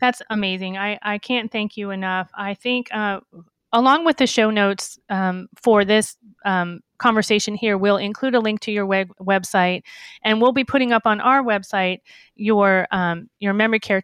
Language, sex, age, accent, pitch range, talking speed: English, female, 30-49, American, 185-225 Hz, 185 wpm